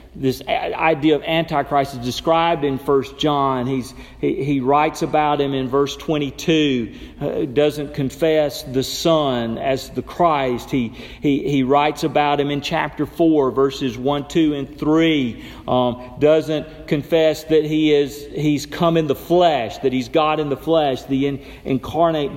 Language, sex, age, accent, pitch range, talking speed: English, male, 40-59, American, 140-195 Hz, 160 wpm